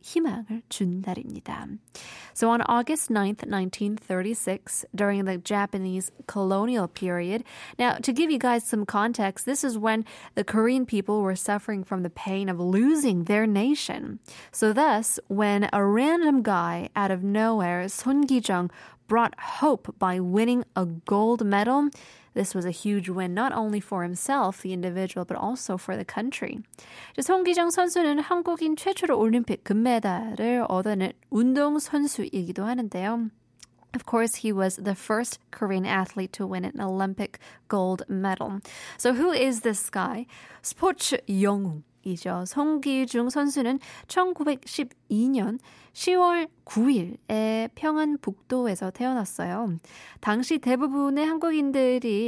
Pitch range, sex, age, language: 190-255 Hz, female, 10-29, Korean